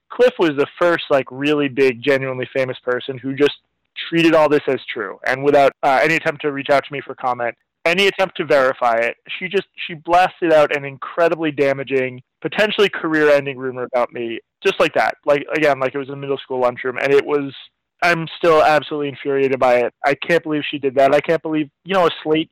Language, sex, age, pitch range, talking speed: English, male, 20-39, 135-160 Hz, 220 wpm